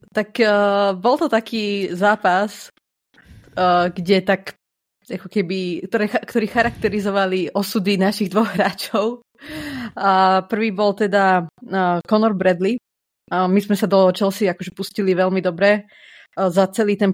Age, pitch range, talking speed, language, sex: 30-49, 185-210 Hz, 100 wpm, Slovak, female